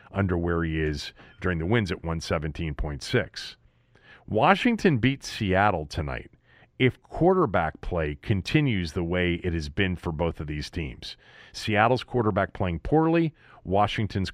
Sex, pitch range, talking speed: male, 95-135 Hz, 135 wpm